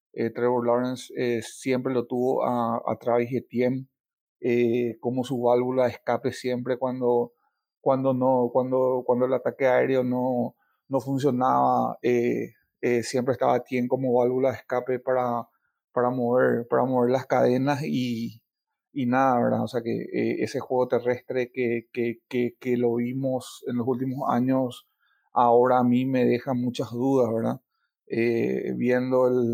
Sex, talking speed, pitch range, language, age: male, 160 wpm, 120-130 Hz, Spanish, 30-49